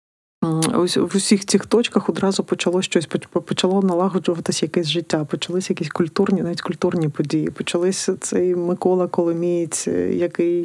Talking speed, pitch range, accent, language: 125 wpm, 160-190 Hz, native, Ukrainian